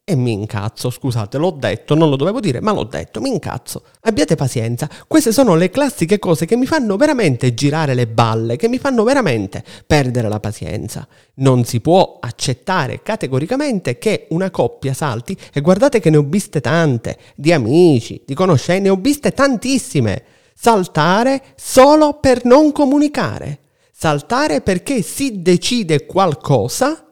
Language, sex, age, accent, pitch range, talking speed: Italian, male, 30-49, native, 140-235 Hz, 155 wpm